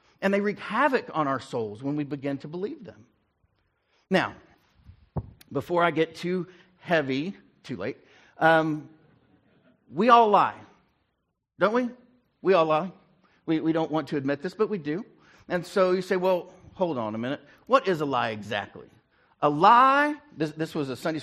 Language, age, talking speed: English, 50-69, 170 wpm